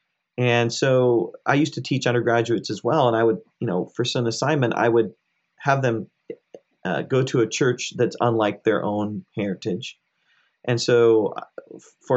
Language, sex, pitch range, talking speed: English, male, 110-130 Hz, 170 wpm